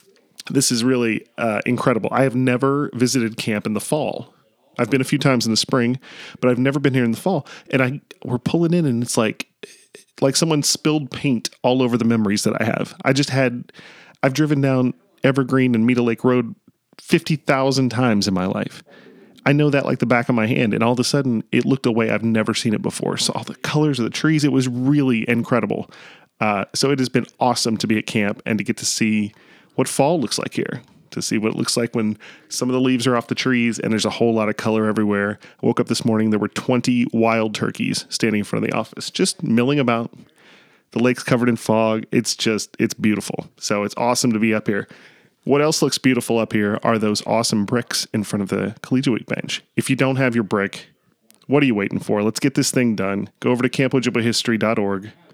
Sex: male